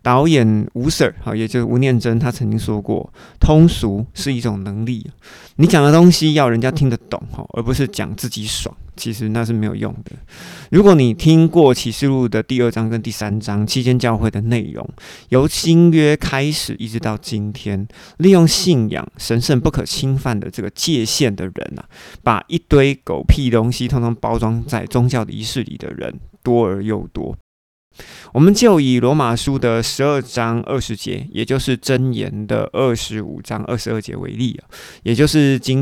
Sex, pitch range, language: male, 110-135 Hz, Chinese